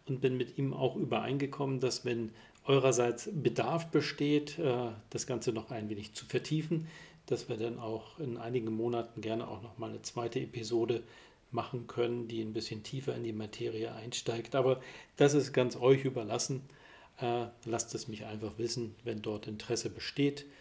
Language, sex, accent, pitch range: German, male, German, 115-145 Hz